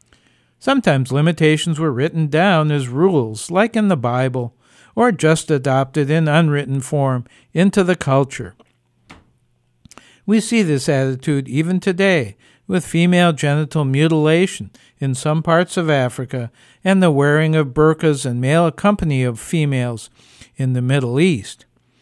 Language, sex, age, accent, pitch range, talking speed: English, male, 60-79, American, 130-175 Hz, 135 wpm